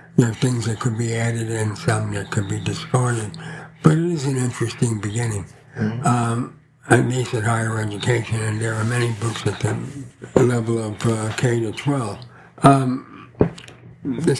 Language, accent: English, American